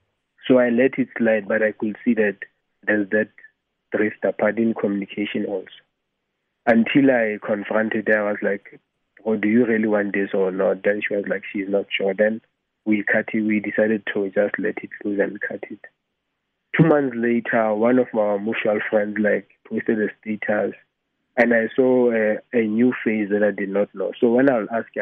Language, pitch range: English, 100-115 Hz